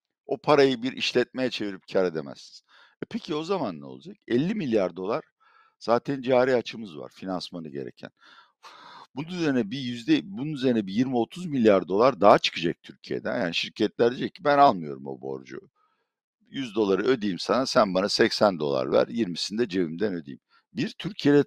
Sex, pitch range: male, 90-150 Hz